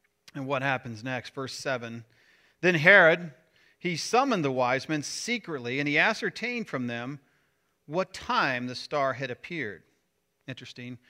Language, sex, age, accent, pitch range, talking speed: English, male, 40-59, American, 125-190 Hz, 140 wpm